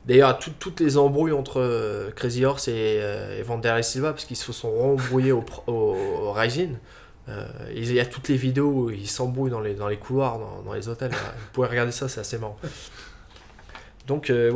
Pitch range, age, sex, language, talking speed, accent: 110-135 Hz, 20-39, male, French, 205 wpm, French